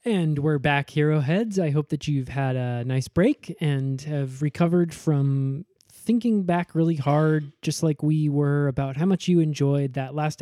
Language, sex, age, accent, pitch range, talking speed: English, male, 20-39, American, 140-170 Hz, 180 wpm